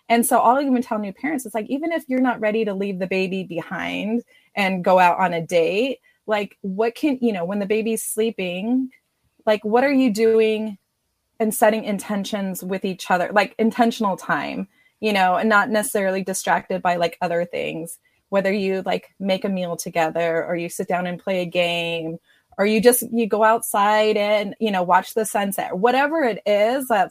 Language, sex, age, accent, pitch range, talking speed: English, female, 20-39, American, 185-230 Hz, 200 wpm